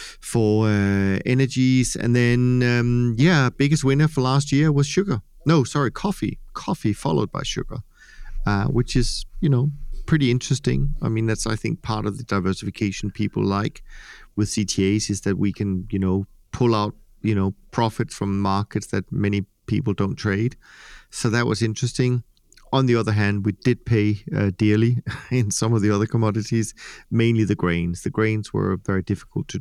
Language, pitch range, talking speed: English, 100-120 Hz, 175 wpm